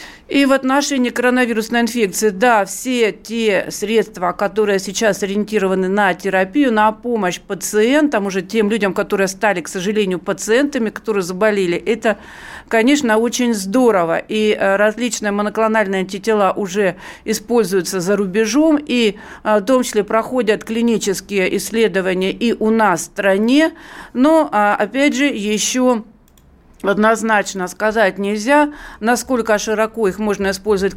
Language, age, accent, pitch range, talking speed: Russian, 50-69, native, 195-230 Hz, 125 wpm